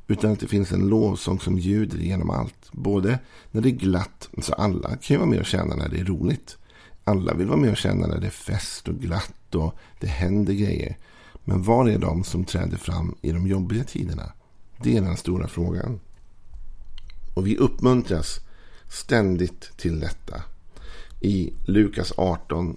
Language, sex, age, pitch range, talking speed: Swedish, male, 50-69, 90-105 Hz, 180 wpm